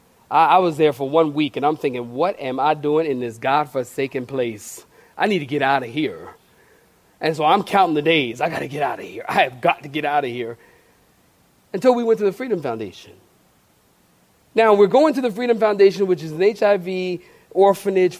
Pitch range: 145-195 Hz